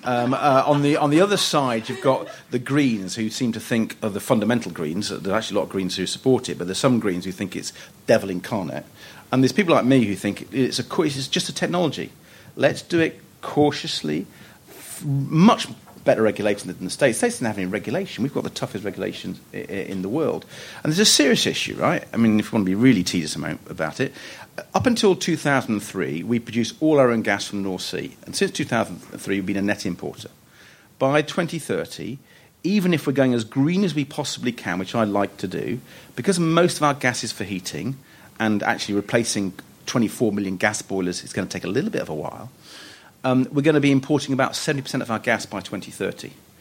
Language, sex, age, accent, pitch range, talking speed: English, male, 40-59, British, 105-150 Hz, 220 wpm